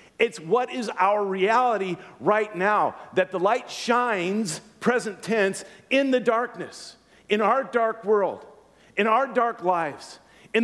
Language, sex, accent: English, male, American